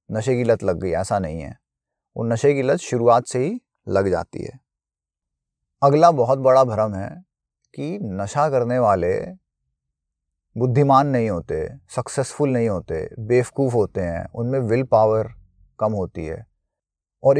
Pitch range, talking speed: 105-140 Hz, 150 wpm